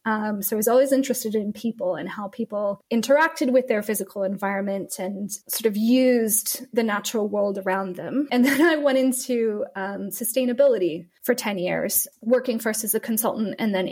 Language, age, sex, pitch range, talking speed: English, 20-39, female, 200-245 Hz, 180 wpm